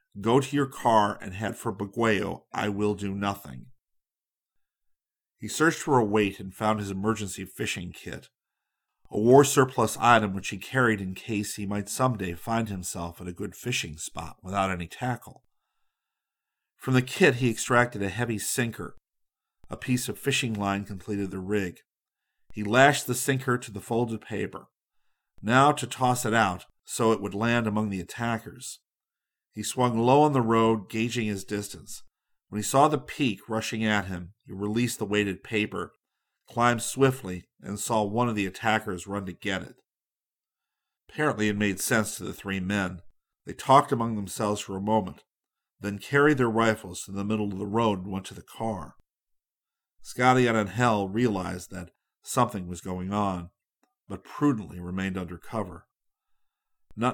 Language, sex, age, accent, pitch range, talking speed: English, male, 50-69, American, 95-120 Hz, 170 wpm